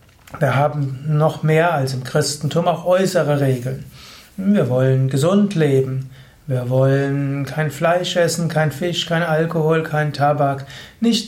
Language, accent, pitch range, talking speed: German, German, 140-170 Hz, 140 wpm